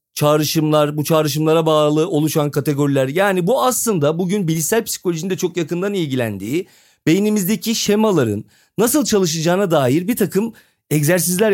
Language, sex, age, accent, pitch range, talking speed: Turkish, male, 40-59, native, 150-215 Hz, 125 wpm